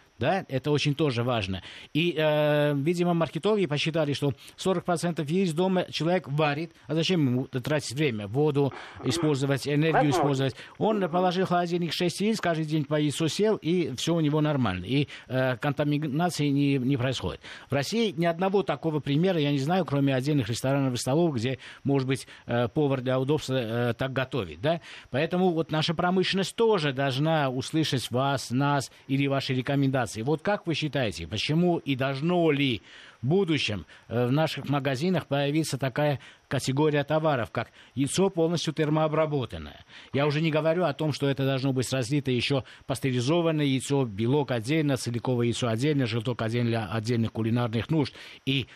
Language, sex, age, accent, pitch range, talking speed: Russian, male, 50-69, native, 130-160 Hz, 160 wpm